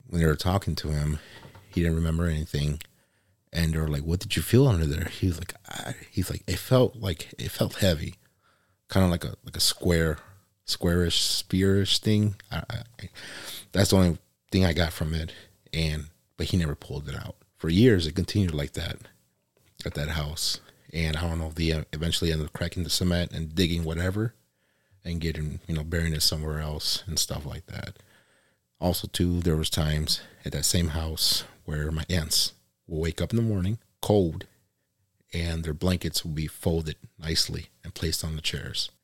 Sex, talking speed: male, 195 wpm